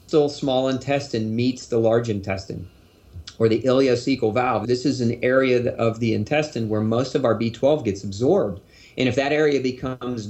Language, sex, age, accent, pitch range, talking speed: English, male, 40-59, American, 110-130 Hz, 170 wpm